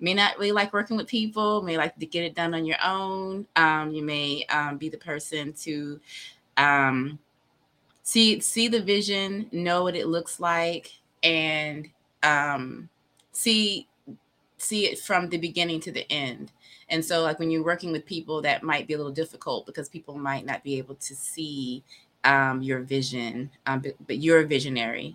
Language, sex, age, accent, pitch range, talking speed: English, female, 20-39, American, 135-165 Hz, 180 wpm